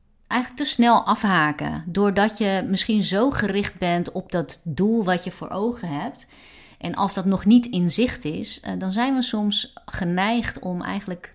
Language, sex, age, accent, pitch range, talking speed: Dutch, female, 30-49, Dutch, 165-205 Hz, 175 wpm